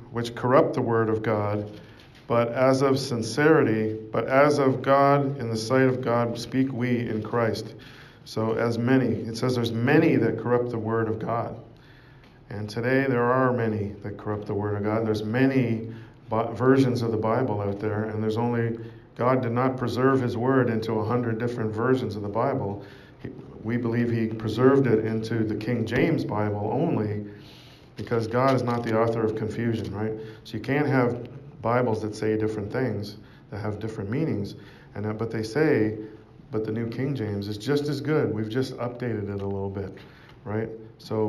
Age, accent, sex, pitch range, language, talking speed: 40-59, American, male, 110-130 Hz, English, 185 wpm